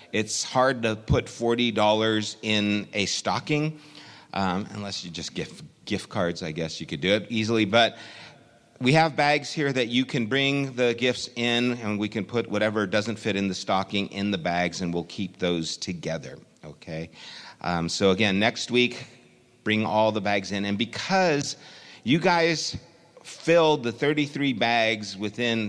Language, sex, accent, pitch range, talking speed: English, male, American, 95-125 Hz, 170 wpm